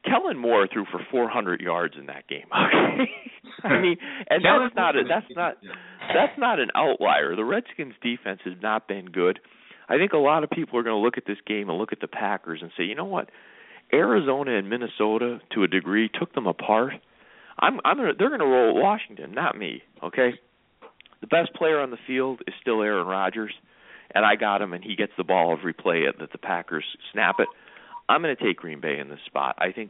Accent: American